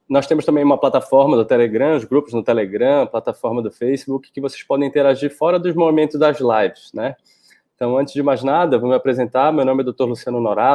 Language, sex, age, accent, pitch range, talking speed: Portuguese, male, 20-39, Brazilian, 120-140 Hz, 210 wpm